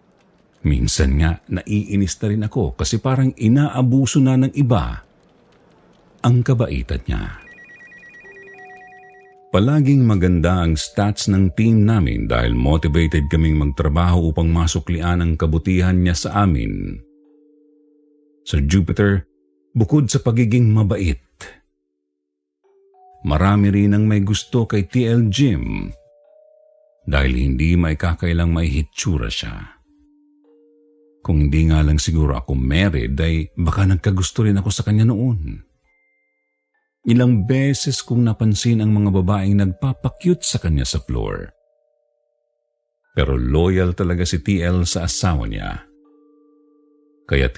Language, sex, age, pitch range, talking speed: Filipino, male, 50-69, 80-135 Hz, 115 wpm